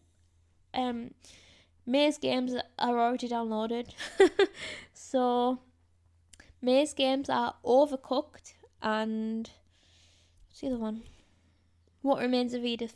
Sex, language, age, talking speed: female, English, 10-29, 95 wpm